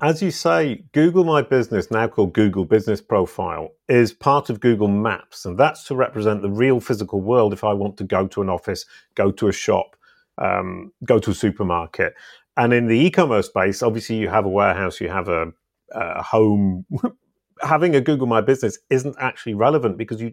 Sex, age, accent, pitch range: male, 40-59, British, 100-130 Hz